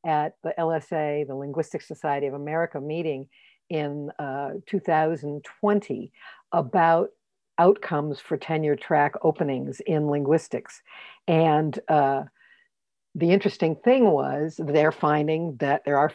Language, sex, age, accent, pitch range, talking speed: English, female, 60-79, American, 150-190 Hz, 115 wpm